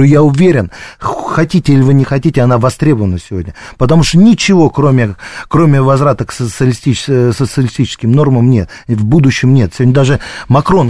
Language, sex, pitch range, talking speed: Russian, male, 115-140 Hz, 150 wpm